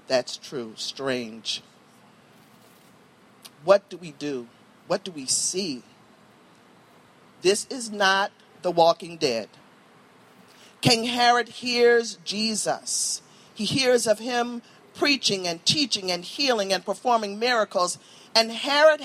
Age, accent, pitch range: 50-69, American, 190-245 Hz